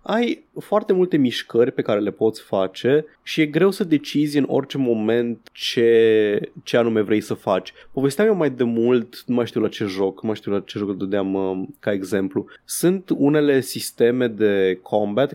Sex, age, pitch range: male, 20-39, 110-140 Hz